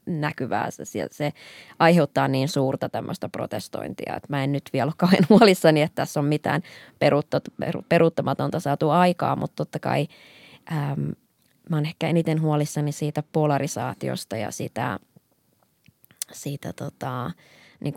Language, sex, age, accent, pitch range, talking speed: Finnish, female, 20-39, native, 140-165 Hz, 125 wpm